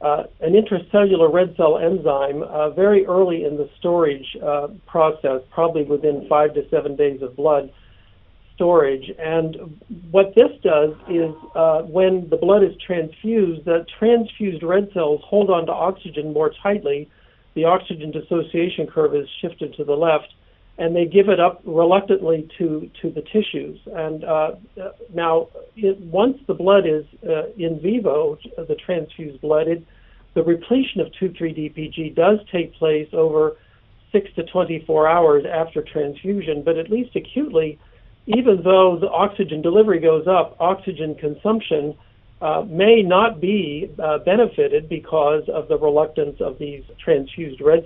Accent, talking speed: American, 150 wpm